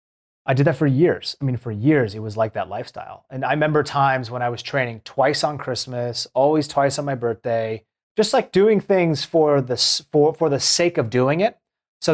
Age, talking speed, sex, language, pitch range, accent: 30-49, 215 wpm, male, English, 125-155 Hz, American